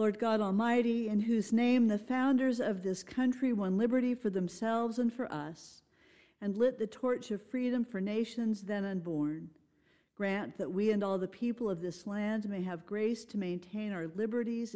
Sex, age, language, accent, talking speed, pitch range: female, 50-69, English, American, 185 wpm, 190-235 Hz